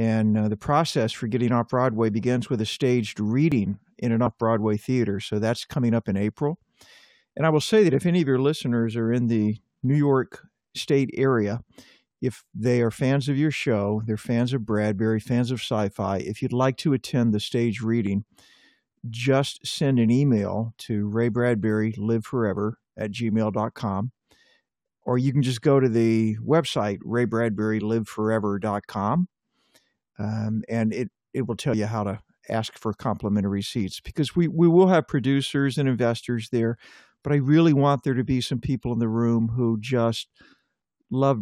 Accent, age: American, 50-69